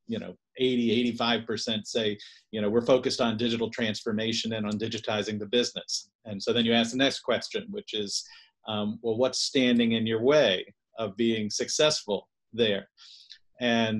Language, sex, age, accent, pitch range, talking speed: English, male, 40-59, American, 110-125 Hz, 170 wpm